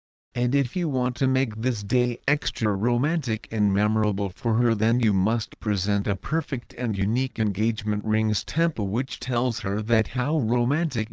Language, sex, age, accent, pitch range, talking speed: English, male, 50-69, American, 105-125 Hz, 165 wpm